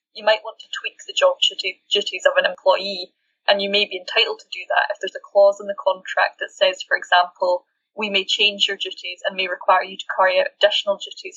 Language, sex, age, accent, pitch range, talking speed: English, female, 10-29, British, 195-290 Hz, 230 wpm